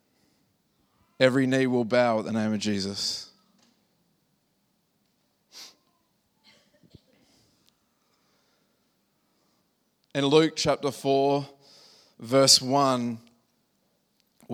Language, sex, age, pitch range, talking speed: English, male, 20-39, 125-145 Hz, 60 wpm